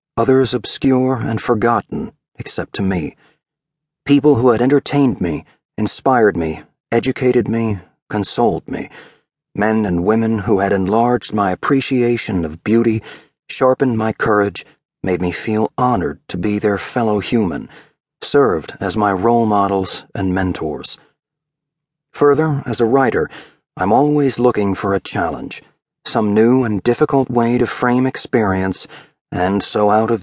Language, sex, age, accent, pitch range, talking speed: English, male, 40-59, American, 100-130 Hz, 135 wpm